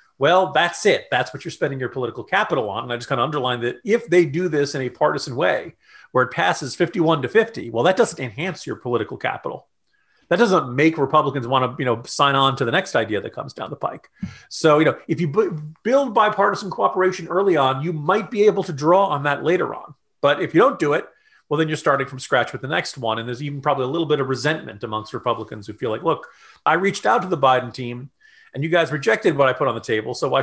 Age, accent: 40-59, American